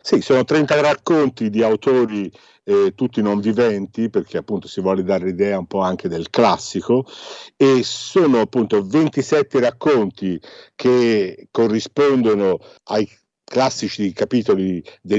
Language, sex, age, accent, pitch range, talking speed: Italian, male, 50-69, native, 105-130 Hz, 125 wpm